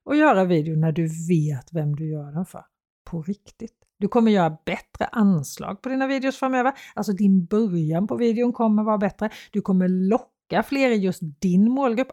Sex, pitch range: female, 170-230 Hz